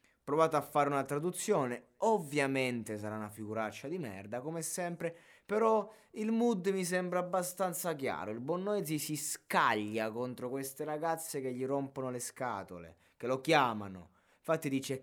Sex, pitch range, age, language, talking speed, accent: male, 120-170 Hz, 20-39, Italian, 150 wpm, native